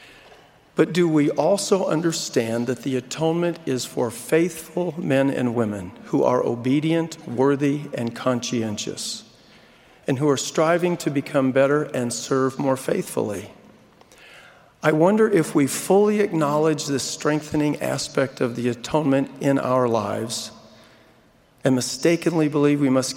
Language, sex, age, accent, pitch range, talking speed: English, male, 50-69, American, 125-150 Hz, 130 wpm